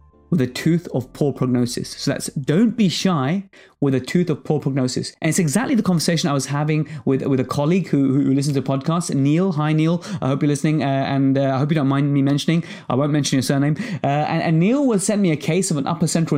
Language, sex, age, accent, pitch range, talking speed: English, male, 20-39, British, 135-175 Hz, 255 wpm